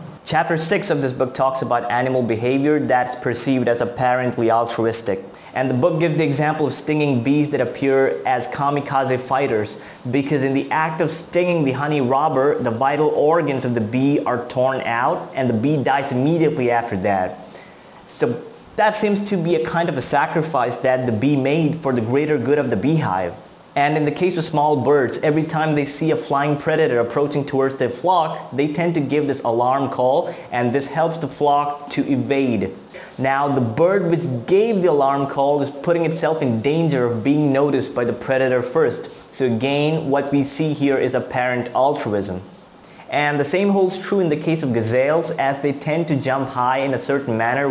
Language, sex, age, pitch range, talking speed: English, male, 20-39, 130-155 Hz, 195 wpm